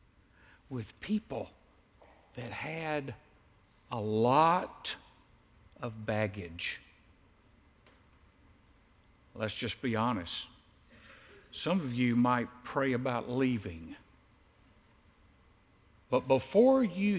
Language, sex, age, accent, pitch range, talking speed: English, male, 60-79, American, 105-150 Hz, 75 wpm